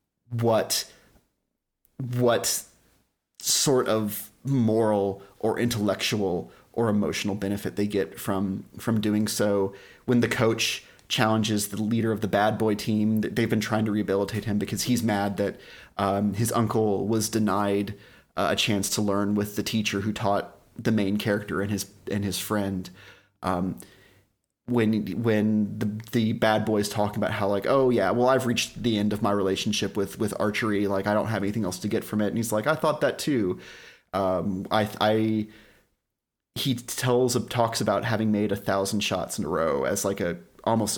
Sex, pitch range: male, 100-110 Hz